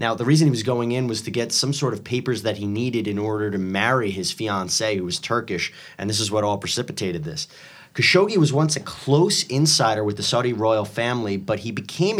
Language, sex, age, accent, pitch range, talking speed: English, male, 30-49, American, 115-150 Hz, 230 wpm